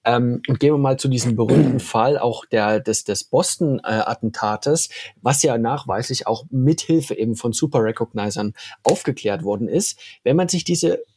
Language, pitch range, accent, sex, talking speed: German, 120-160 Hz, German, male, 170 wpm